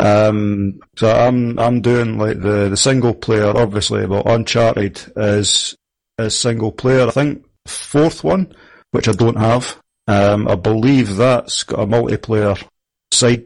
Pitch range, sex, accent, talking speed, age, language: 100-120 Hz, male, British, 145 wpm, 40-59, English